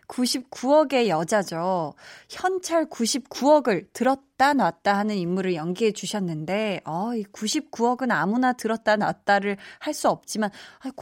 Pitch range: 185-260 Hz